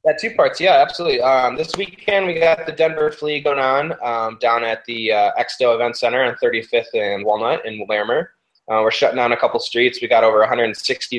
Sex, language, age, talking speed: male, English, 20-39, 215 wpm